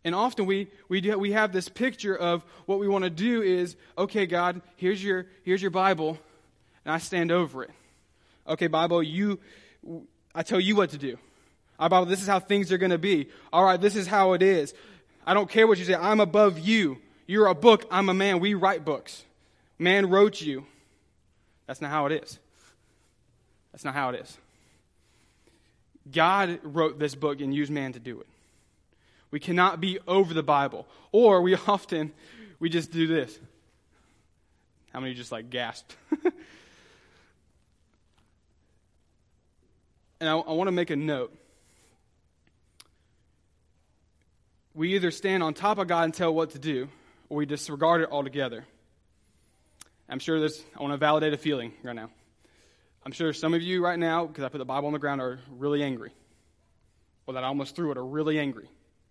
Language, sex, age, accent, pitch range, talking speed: English, male, 20-39, American, 130-190 Hz, 180 wpm